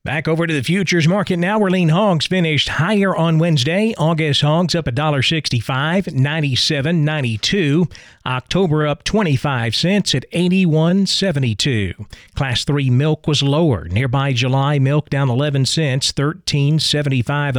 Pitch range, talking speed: 135-165 Hz, 130 wpm